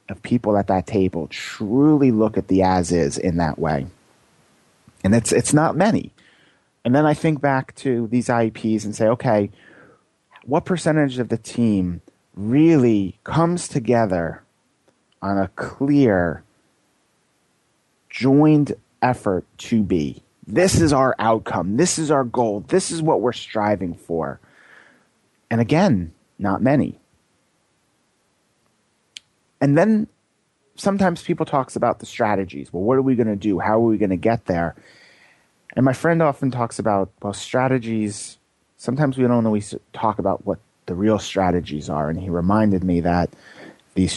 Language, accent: English, American